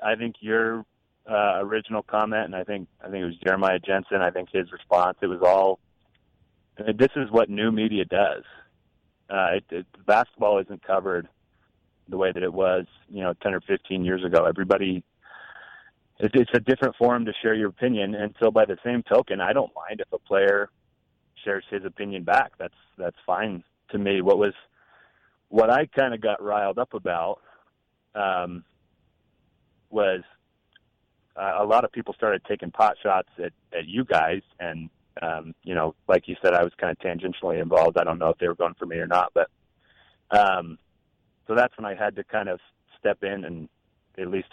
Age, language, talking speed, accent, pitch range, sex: 30-49, English, 190 wpm, American, 90-110 Hz, male